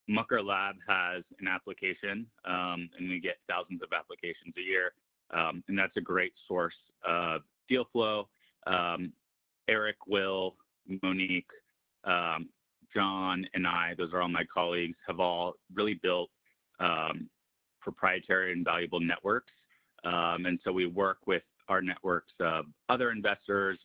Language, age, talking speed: English, 30-49, 140 wpm